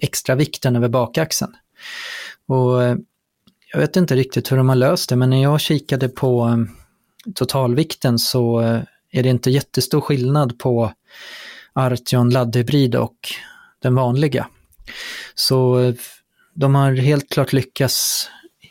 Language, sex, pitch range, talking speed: Swedish, male, 125-140 Hz, 120 wpm